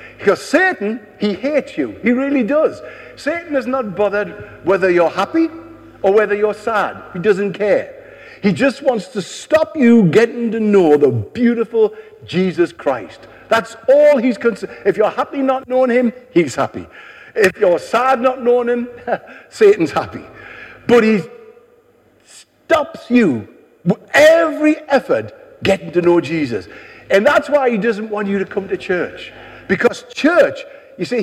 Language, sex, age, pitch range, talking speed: English, male, 50-69, 195-280 Hz, 155 wpm